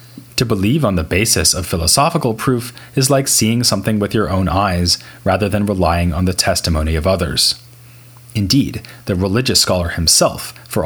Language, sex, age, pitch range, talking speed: English, male, 30-49, 90-120 Hz, 165 wpm